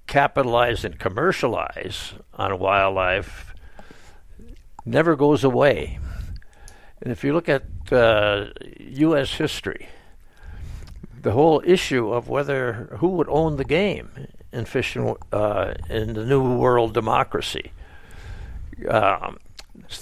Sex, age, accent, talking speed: male, 60-79, American, 110 wpm